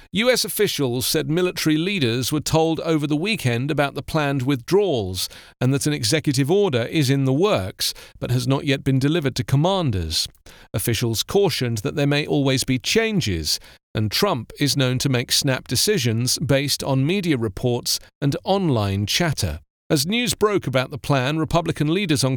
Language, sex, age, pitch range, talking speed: English, male, 40-59, 125-165 Hz, 170 wpm